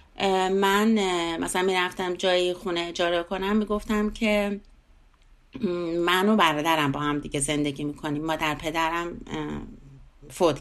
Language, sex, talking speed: Persian, female, 130 wpm